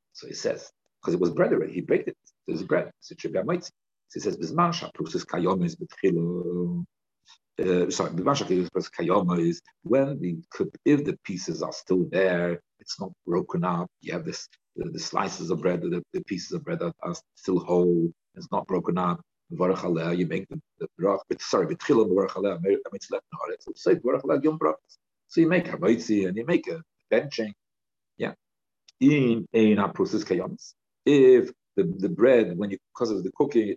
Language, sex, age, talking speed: English, male, 50-69, 185 wpm